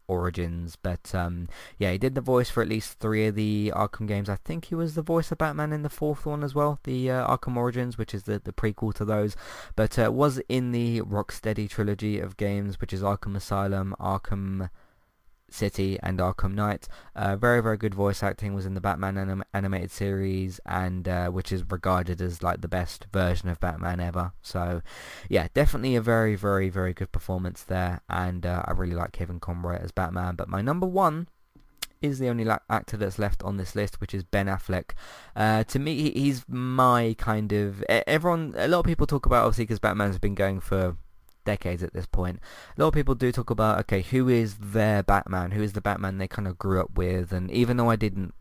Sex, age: male, 20-39